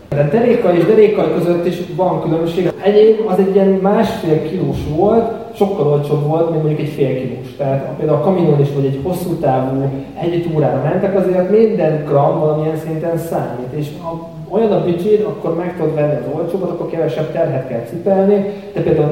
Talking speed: 185 wpm